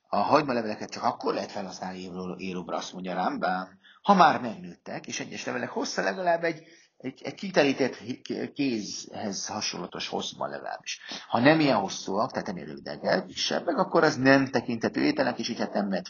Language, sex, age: Hungarian, male, 50-69